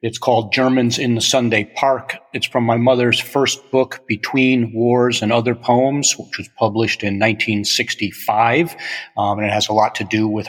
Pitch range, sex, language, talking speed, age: 110-125 Hz, male, English, 185 wpm, 40-59